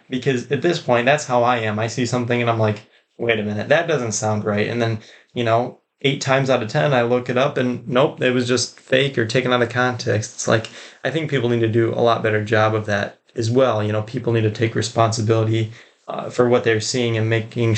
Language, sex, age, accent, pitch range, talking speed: English, male, 20-39, American, 110-125 Hz, 255 wpm